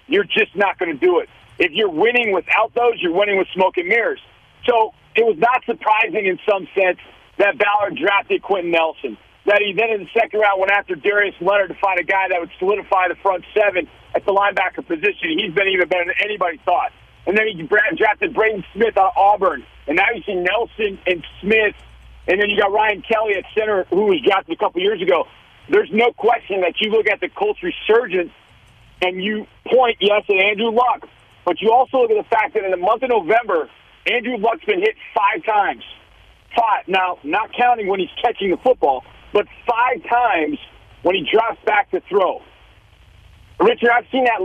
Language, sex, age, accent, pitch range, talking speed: English, male, 50-69, American, 195-260 Hz, 205 wpm